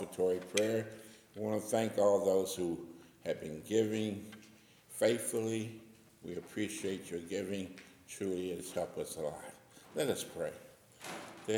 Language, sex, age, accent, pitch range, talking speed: English, male, 60-79, American, 95-130 Hz, 140 wpm